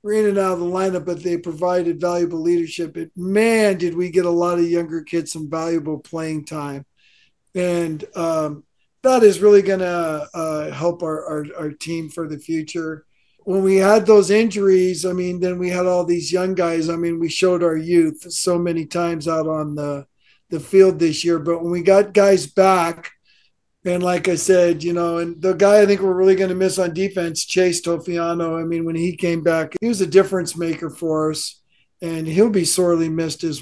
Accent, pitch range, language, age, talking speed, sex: American, 165-190 Hz, English, 50-69, 205 wpm, male